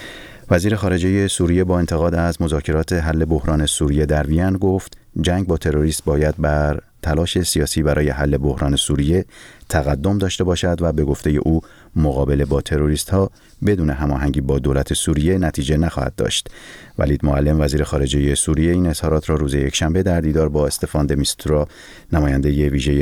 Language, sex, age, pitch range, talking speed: Persian, male, 30-49, 70-85 Hz, 160 wpm